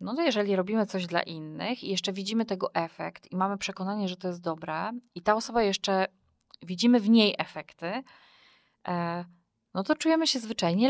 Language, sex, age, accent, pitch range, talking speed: Polish, female, 20-39, native, 175-200 Hz, 175 wpm